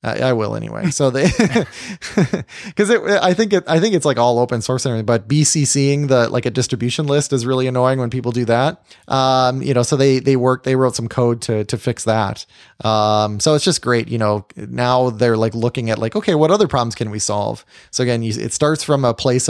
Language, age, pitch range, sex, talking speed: English, 20-39, 110-140 Hz, male, 235 wpm